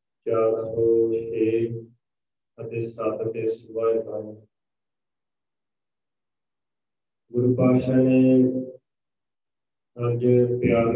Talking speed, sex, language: 70 wpm, male, Punjabi